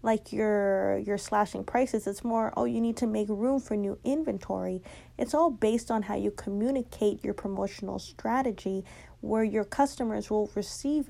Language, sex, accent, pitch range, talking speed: English, female, American, 205-245 Hz, 160 wpm